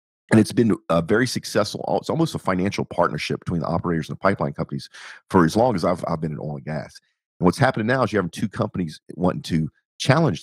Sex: male